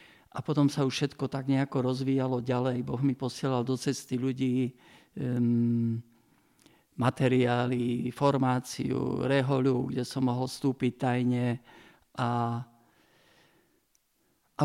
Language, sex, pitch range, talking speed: Slovak, male, 125-145 Hz, 105 wpm